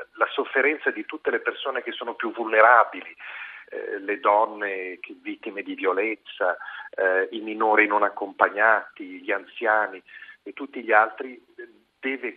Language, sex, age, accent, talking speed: Italian, male, 40-59, native, 135 wpm